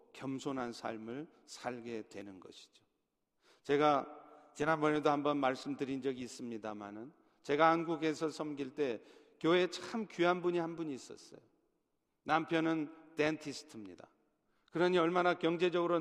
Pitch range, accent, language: 150-205 Hz, native, Korean